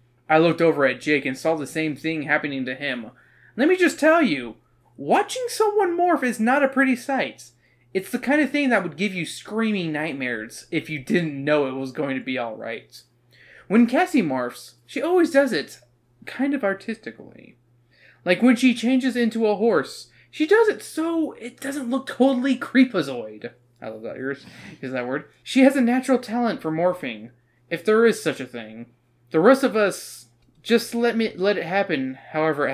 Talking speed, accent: 190 wpm, American